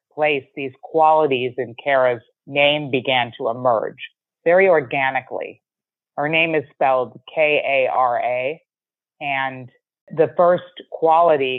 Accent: American